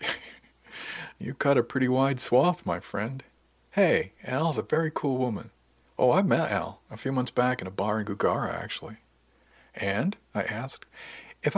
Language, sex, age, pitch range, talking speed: English, male, 50-69, 90-125 Hz, 165 wpm